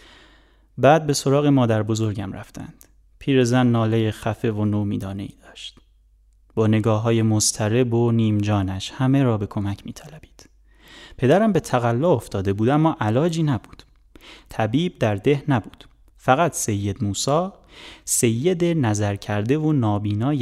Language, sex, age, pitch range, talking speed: Persian, male, 30-49, 105-145 Hz, 130 wpm